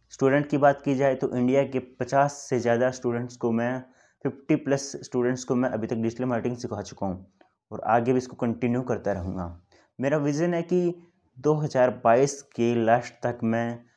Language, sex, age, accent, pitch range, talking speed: Hindi, male, 20-39, native, 115-130 Hz, 180 wpm